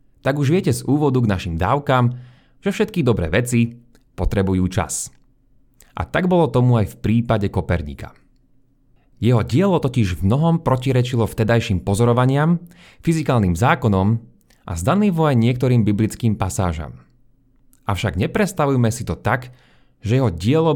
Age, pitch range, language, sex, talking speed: 30-49, 105-140 Hz, Slovak, male, 135 wpm